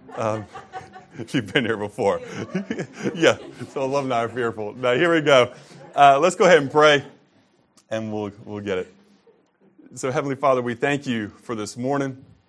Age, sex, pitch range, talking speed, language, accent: 30-49, male, 95-110 Hz, 170 wpm, English, American